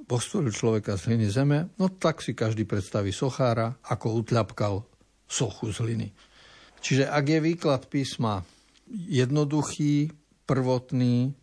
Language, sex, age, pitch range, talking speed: Slovak, male, 60-79, 110-130 Hz, 120 wpm